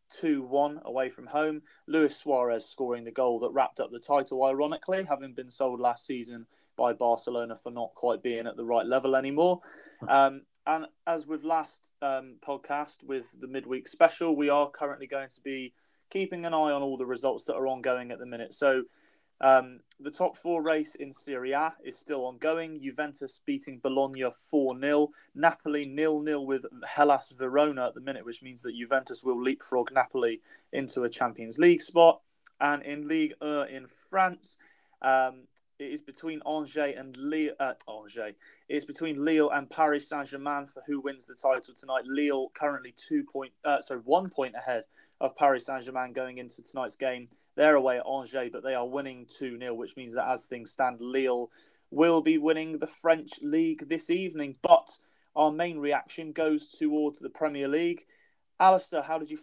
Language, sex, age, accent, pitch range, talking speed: English, male, 20-39, British, 130-155 Hz, 180 wpm